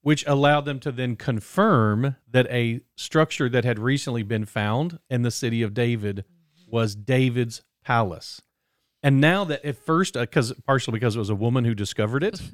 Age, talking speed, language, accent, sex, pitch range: 40-59, 180 wpm, English, American, male, 110-130 Hz